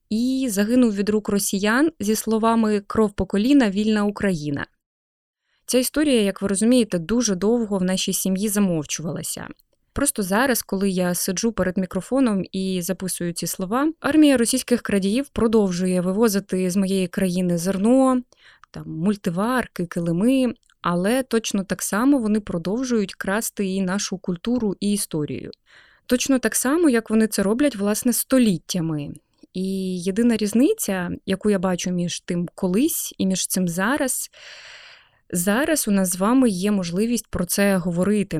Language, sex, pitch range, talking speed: Ukrainian, female, 185-230 Hz, 140 wpm